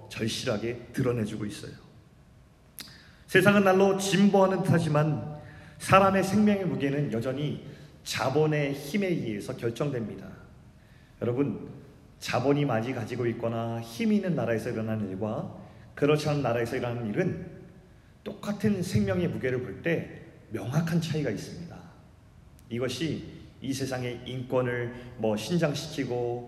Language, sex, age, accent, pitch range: Korean, male, 40-59, native, 120-165 Hz